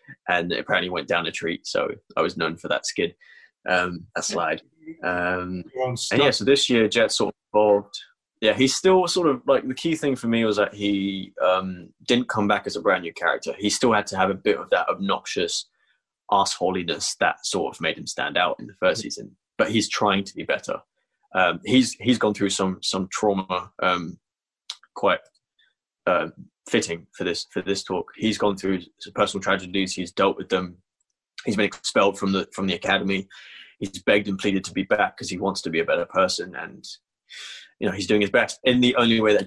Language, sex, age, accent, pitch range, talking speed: English, male, 20-39, British, 95-130 Hz, 210 wpm